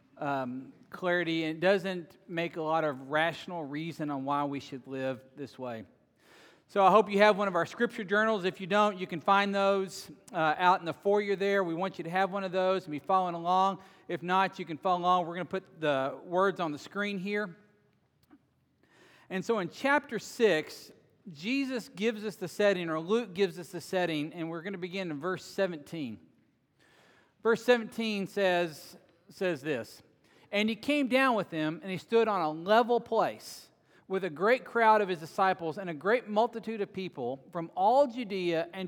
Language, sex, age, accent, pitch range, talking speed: English, male, 40-59, American, 160-210 Hz, 200 wpm